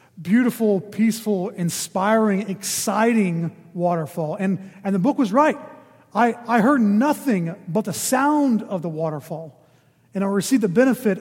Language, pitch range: English, 175-230 Hz